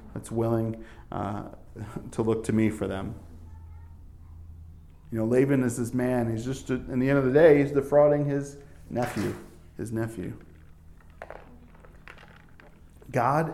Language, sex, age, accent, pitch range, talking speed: English, male, 40-59, American, 105-130 Hz, 135 wpm